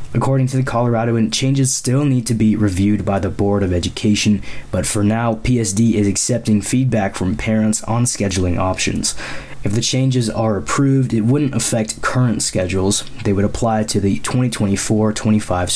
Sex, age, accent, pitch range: male, 20-39, American, 100-125 Hz